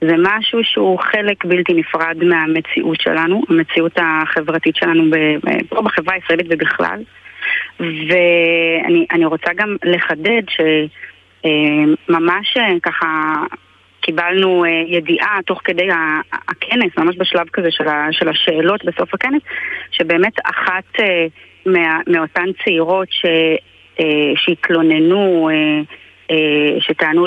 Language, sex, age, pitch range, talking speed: Hebrew, female, 30-49, 160-185 Hz, 90 wpm